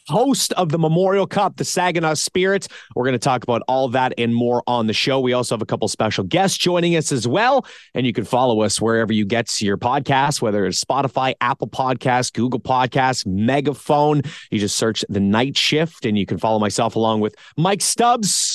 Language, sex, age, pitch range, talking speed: English, male, 30-49, 130-170 Hz, 215 wpm